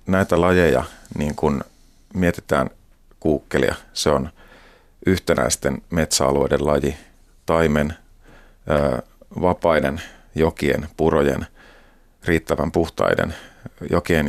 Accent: native